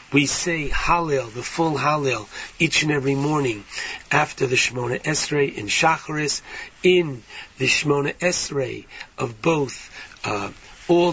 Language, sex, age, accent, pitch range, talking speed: English, male, 60-79, American, 135-170 Hz, 130 wpm